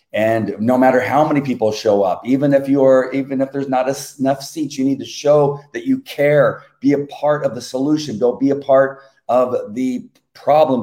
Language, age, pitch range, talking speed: English, 40-59, 105-135 Hz, 205 wpm